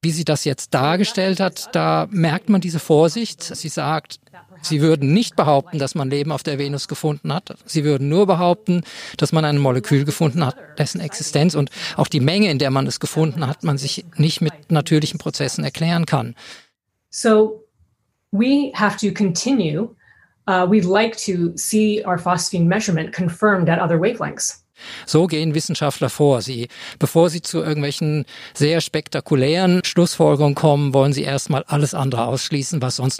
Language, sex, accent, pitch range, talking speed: German, male, German, 145-180 Hz, 165 wpm